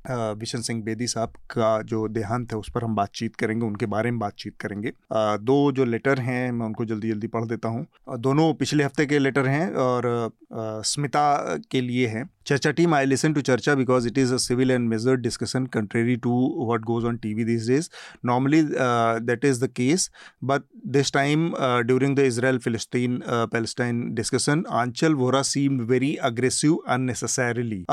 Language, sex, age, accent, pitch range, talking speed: Hindi, male, 30-49, native, 120-140 Hz, 115 wpm